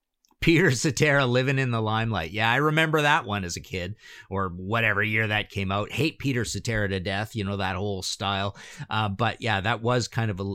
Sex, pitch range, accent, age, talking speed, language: male, 105-145 Hz, American, 50-69, 215 wpm, English